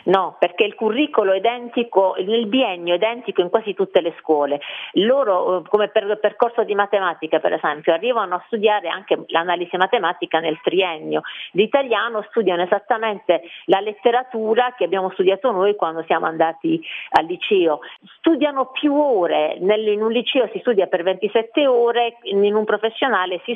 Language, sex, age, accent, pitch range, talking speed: Italian, female, 40-59, native, 170-225 Hz, 155 wpm